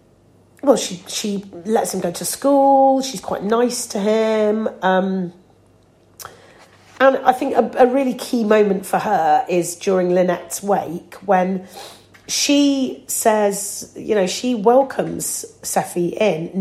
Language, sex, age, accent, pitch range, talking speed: English, female, 40-59, British, 180-240 Hz, 135 wpm